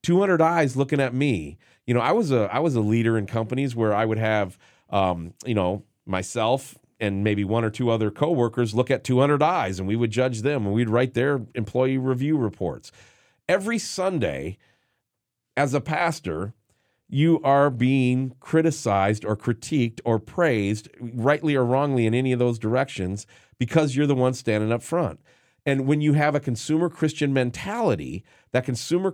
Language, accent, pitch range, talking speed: English, American, 105-140 Hz, 175 wpm